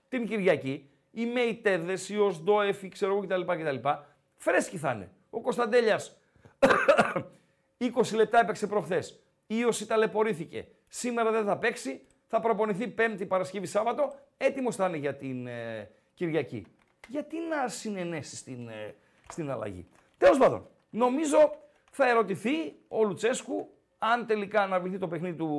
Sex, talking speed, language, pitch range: male, 145 wpm, Greek, 165-250 Hz